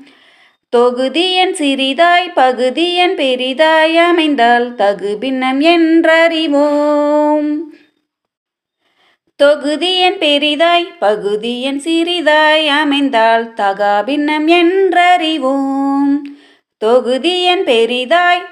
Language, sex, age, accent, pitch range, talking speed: Tamil, female, 20-39, native, 250-325 Hz, 60 wpm